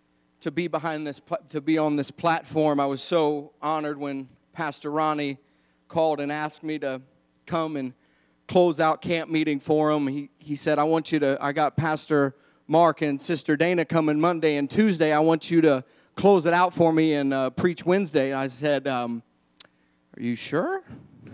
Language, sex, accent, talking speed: English, male, American, 185 wpm